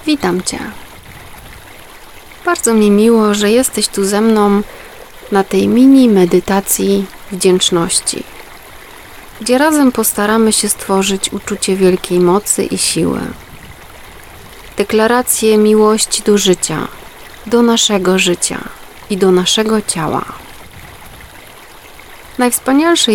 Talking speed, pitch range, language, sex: 95 wpm, 195-245 Hz, Polish, female